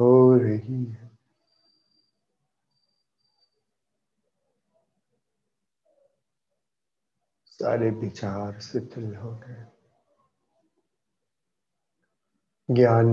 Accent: native